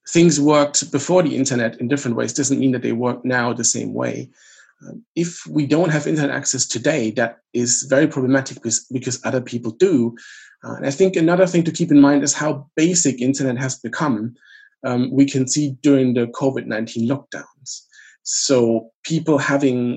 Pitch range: 120-145 Hz